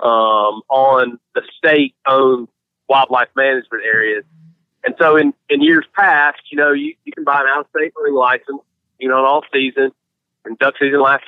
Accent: American